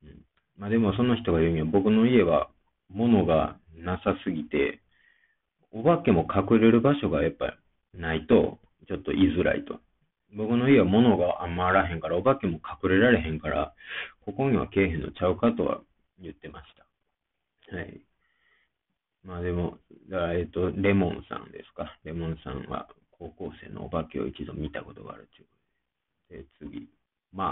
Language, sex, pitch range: Japanese, male, 85-100 Hz